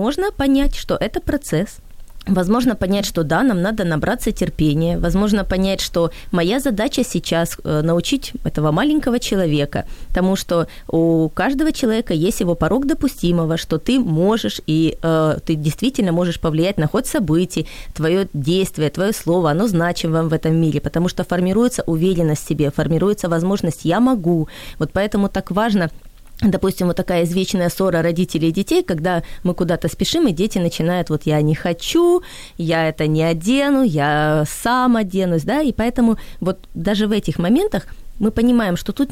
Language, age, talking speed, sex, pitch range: Ukrainian, 20-39, 165 wpm, female, 165-210 Hz